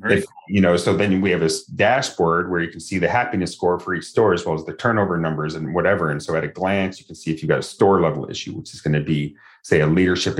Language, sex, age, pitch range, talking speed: English, male, 30-49, 80-100 Hz, 285 wpm